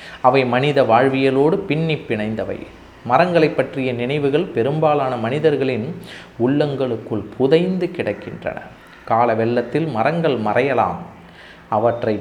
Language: Tamil